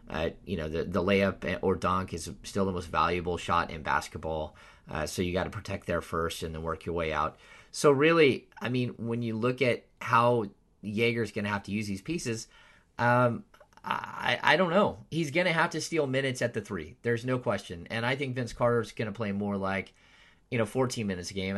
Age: 30-49